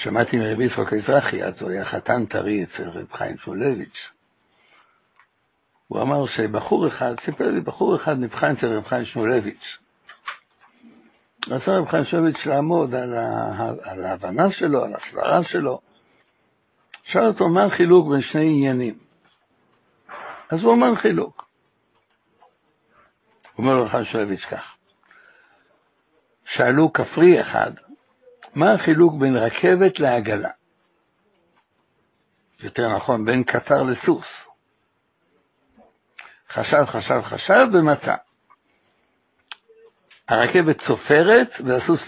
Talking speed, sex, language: 105 wpm, male, Hebrew